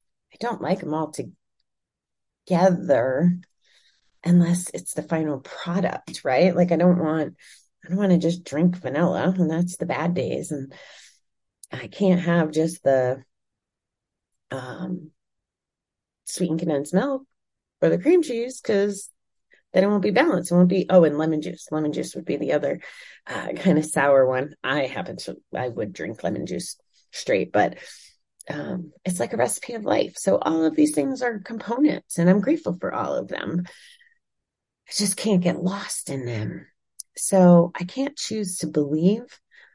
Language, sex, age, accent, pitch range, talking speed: English, female, 30-49, American, 160-210 Hz, 165 wpm